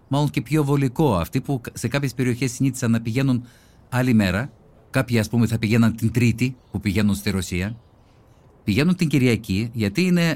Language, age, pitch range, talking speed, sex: Greek, 50-69, 100-135 Hz, 175 wpm, male